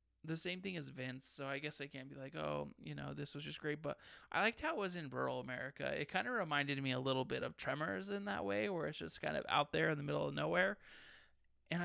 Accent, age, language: American, 20-39, English